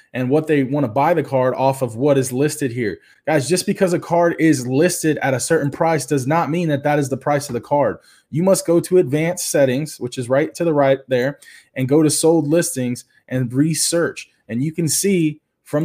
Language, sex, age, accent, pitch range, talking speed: English, male, 20-39, American, 135-165 Hz, 230 wpm